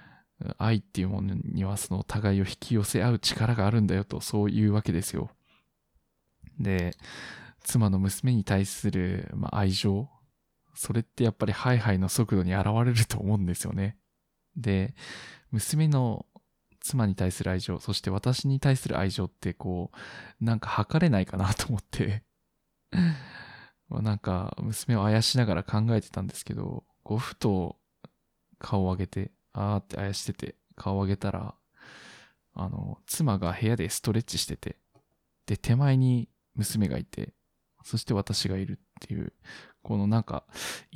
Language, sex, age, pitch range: Japanese, male, 20-39, 95-125 Hz